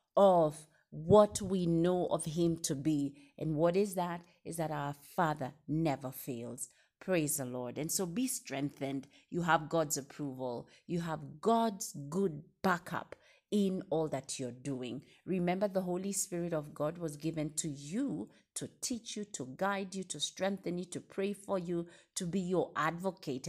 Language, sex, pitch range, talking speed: English, female, 140-190 Hz, 170 wpm